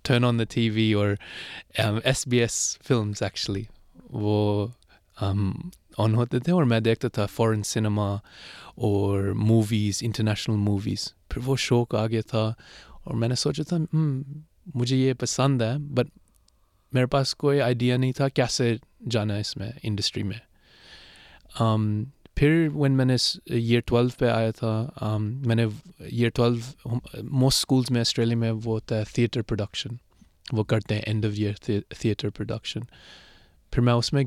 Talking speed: 150 wpm